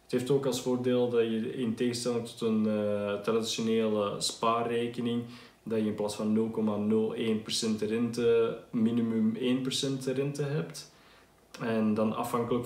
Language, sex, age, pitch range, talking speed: Dutch, male, 20-39, 110-130 Hz, 135 wpm